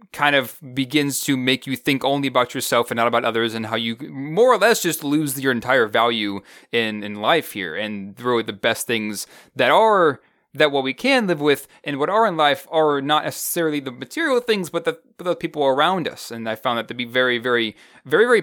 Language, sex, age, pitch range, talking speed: English, male, 20-39, 110-150 Hz, 230 wpm